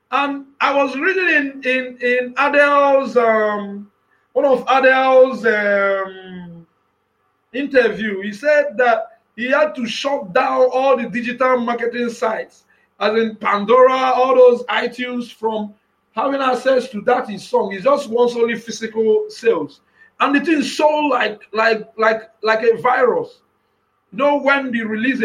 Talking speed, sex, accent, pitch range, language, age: 135 wpm, male, Nigerian, 220-280 Hz, English, 50-69